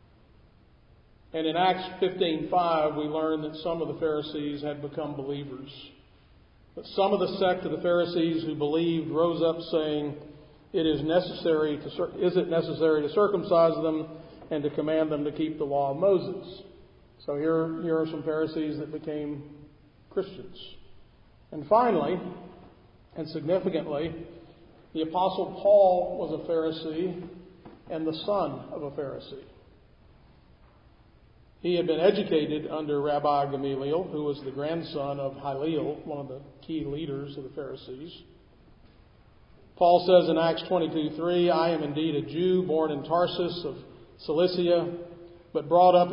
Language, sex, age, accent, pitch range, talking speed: English, male, 50-69, American, 150-175 Hz, 145 wpm